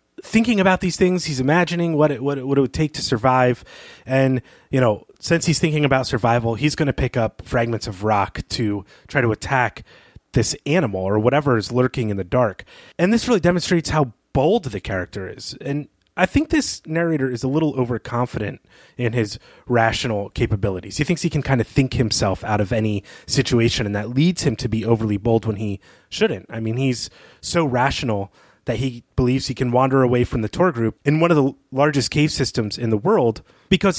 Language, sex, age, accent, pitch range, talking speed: English, male, 30-49, American, 105-140 Hz, 205 wpm